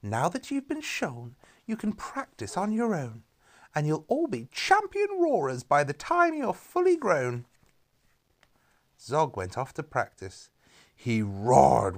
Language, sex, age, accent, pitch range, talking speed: English, male, 30-49, British, 115-190 Hz, 150 wpm